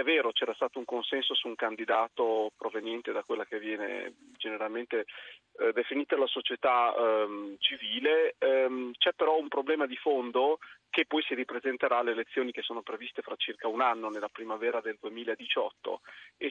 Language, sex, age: Italian, male, 30-49